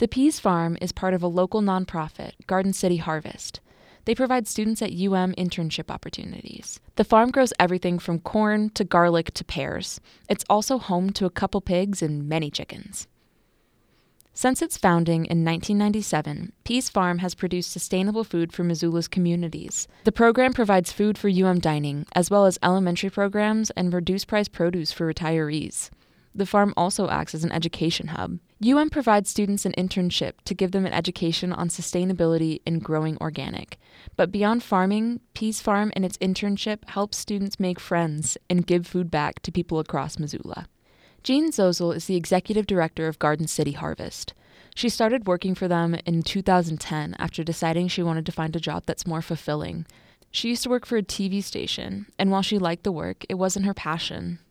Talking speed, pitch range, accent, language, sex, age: 175 wpm, 170-205 Hz, American, English, female, 20-39